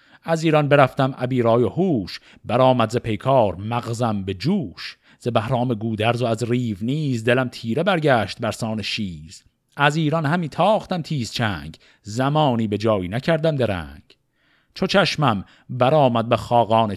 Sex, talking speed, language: male, 150 wpm, Persian